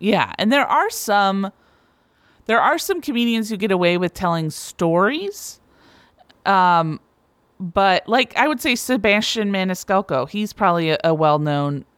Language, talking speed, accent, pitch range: English, 140 wpm, American, 165-210 Hz